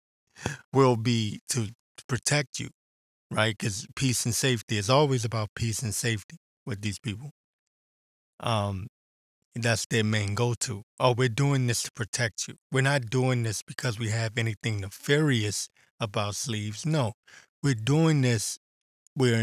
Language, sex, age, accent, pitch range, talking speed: English, male, 20-39, American, 105-125 Hz, 145 wpm